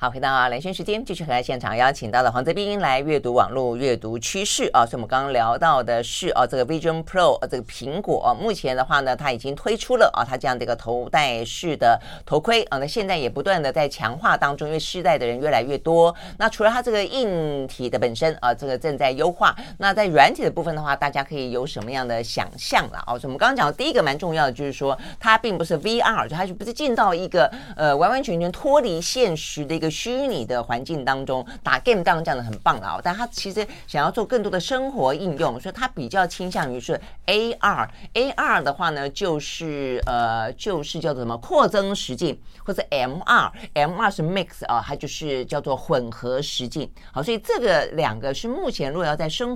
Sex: female